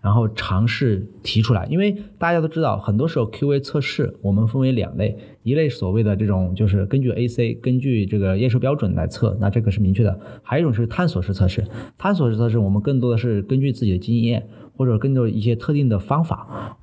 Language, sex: Chinese, male